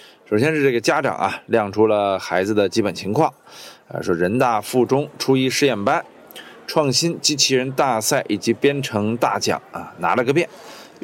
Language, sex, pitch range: Chinese, male, 110-150 Hz